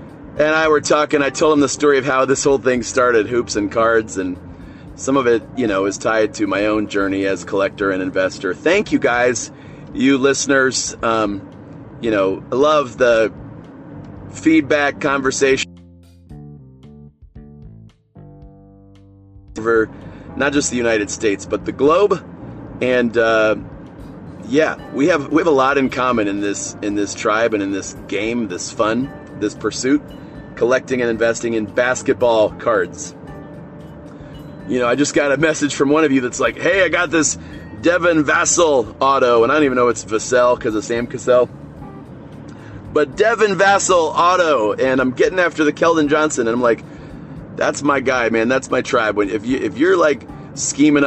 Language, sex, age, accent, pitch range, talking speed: English, male, 30-49, American, 105-145 Hz, 170 wpm